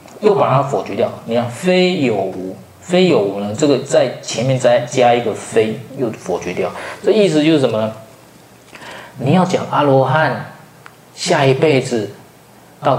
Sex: male